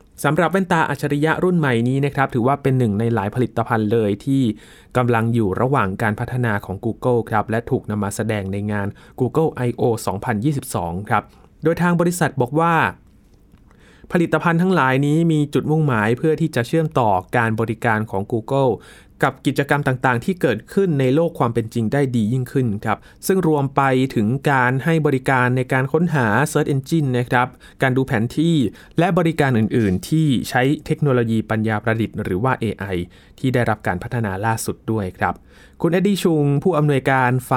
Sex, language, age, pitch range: male, Thai, 20-39, 110-150 Hz